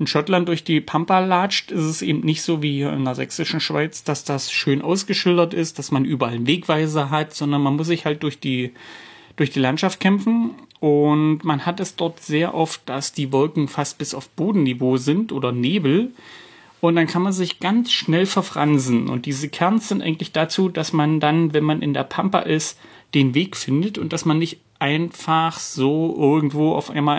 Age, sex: 30-49, male